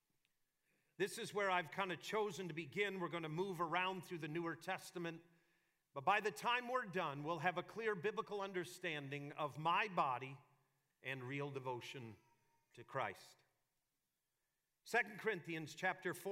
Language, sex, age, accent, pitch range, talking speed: English, male, 50-69, American, 160-200 Hz, 150 wpm